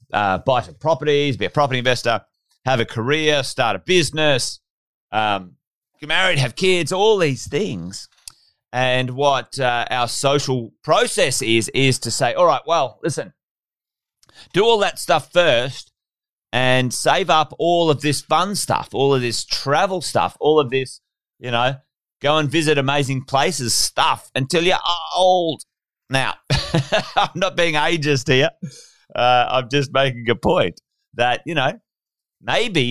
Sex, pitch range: male, 120-150 Hz